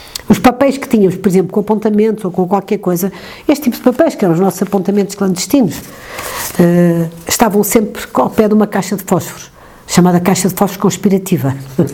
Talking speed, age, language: 180 wpm, 60-79, Portuguese